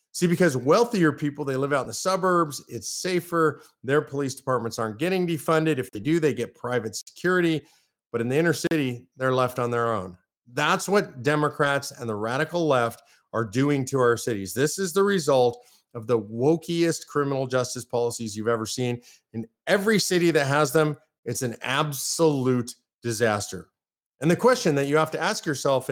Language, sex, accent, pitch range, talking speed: English, male, American, 125-185 Hz, 185 wpm